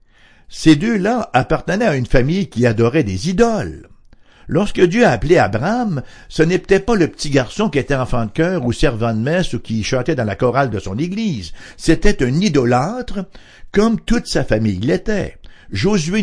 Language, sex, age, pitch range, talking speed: English, male, 60-79, 115-165 Hz, 180 wpm